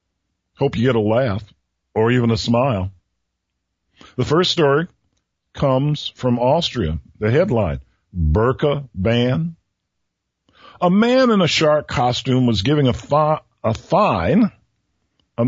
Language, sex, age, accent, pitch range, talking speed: English, male, 50-69, American, 120-165 Hz, 125 wpm